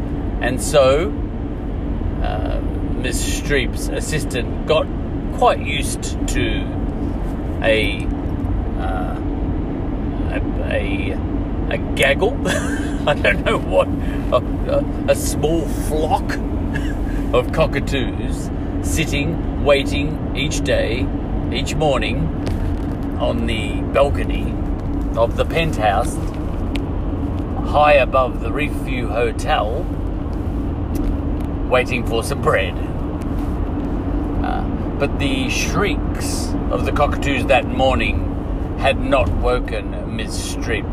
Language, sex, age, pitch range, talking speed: English, male, 40-59, 90-100 Hz, 90 wpm